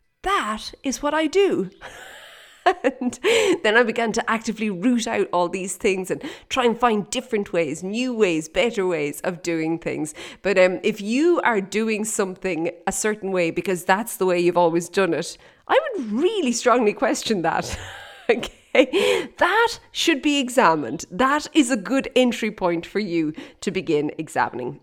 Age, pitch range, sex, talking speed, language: 30-49, 170-220 Hz, female, 165 wpm, English